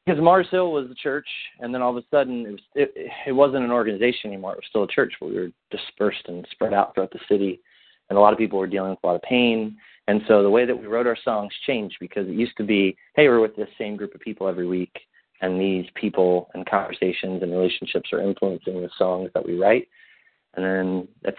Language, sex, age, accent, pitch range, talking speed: English, male, 30-49, American, 90-110 Hz, 245 wpm